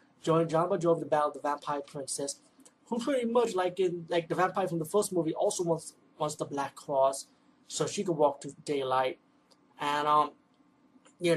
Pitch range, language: 145-165 Hz, English